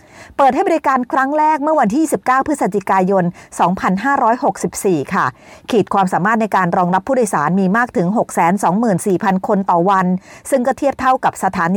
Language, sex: Thai, female